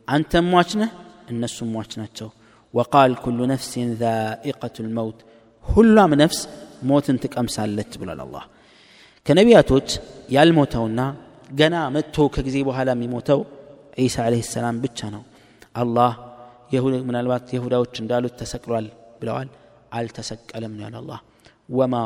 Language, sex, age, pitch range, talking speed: Amharic, male, 30-49, 115-135 Hz, 110 wpm